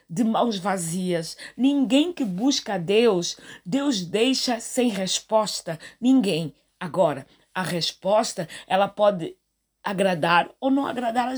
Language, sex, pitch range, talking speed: Portuguese, female, 220-275 Hz, 120 wpm